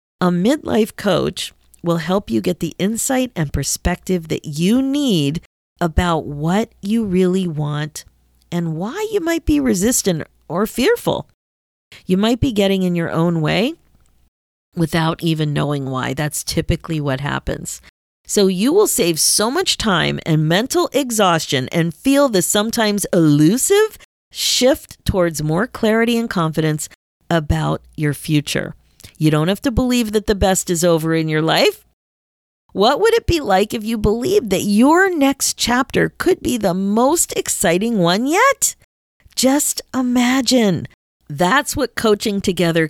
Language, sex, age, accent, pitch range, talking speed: English, female, 40-59, American, 155-230 Hz, 145 wpm